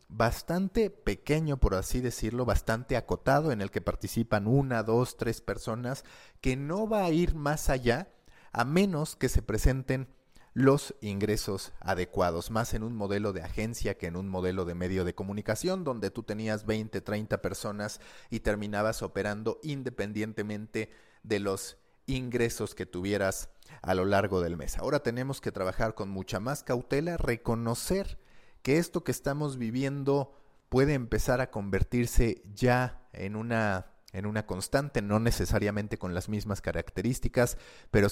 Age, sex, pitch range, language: 40-59, male, 95-125 Hz, Spanish